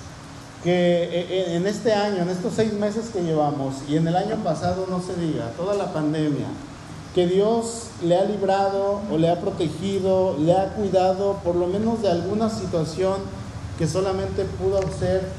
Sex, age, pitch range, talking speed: male, 40-59, 145-200 Hz, 175 wpm